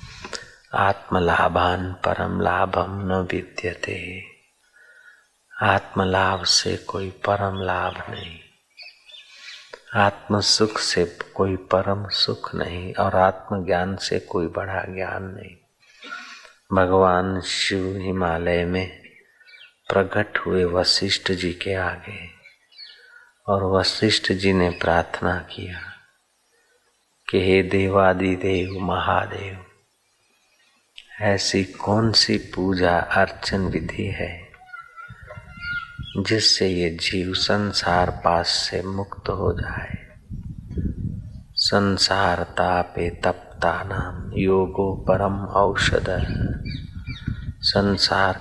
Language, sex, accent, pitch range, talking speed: Hindi, male, native, 90-100 Hz, 85 wpm